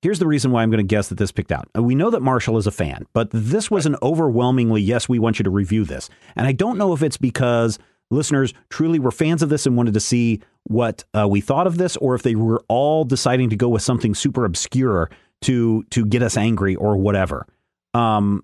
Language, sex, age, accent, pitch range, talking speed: English, male, 40-59, American, 115-155 Hz, 240 wpm